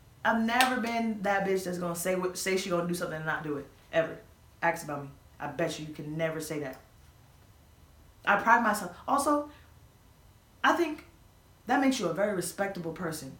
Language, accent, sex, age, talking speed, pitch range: English, American, female, 20-39, 195 wpm, 150-190 Hz